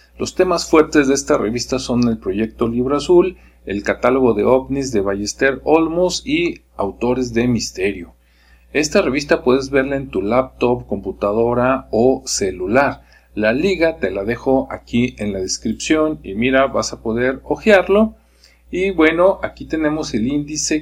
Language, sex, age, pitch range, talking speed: Spanish, male, 50-69, 110-150 Hz, 155 wpm